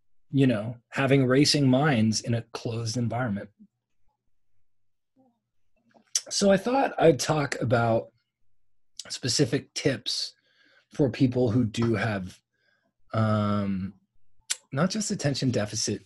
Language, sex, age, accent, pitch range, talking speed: English, male, 30-49, American, 100-130 Hz, 100 wpm